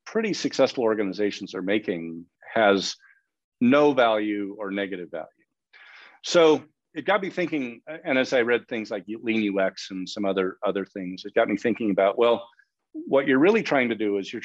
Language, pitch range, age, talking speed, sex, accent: English, 95-130 Hz, 40-59, 180 wpm, male, American